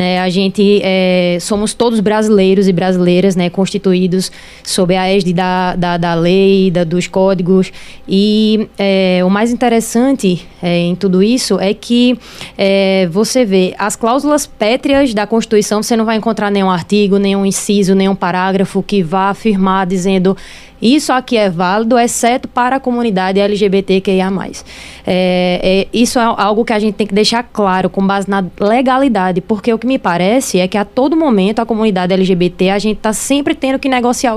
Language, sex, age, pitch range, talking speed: Portuguese, female, 20-39, 190-235 Hz, 170 wpm